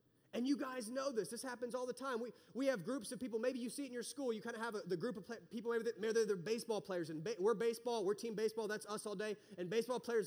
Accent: American